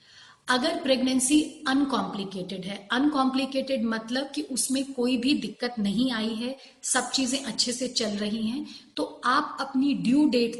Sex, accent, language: female, native, Hindi